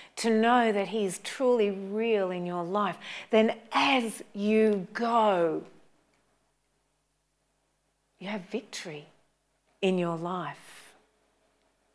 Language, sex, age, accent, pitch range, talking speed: English, female, 40-59, Australian, 180-220 Hz, 100 wpm